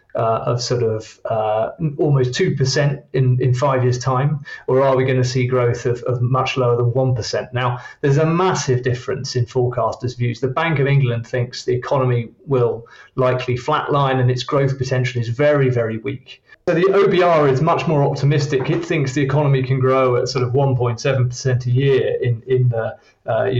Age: 30-49